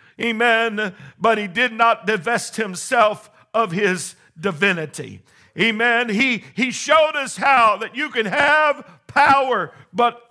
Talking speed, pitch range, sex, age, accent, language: 130 wpm, 200-265 Hz, male, 50-69, American, English